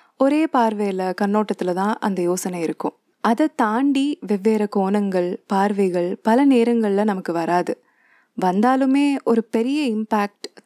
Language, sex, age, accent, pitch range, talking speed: Tamil, female, 20-39, native, 190-260 Hz, 115 wpm